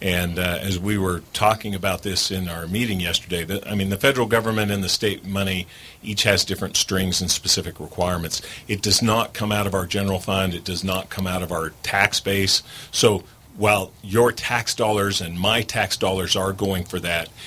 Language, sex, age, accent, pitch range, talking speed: English, male, 40-59, American, 90-110 Hz, 205 wpm